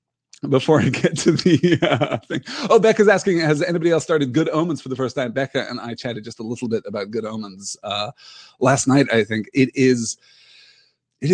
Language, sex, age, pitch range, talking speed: English, male, 30-49, 120-155 Hz, 205 wpm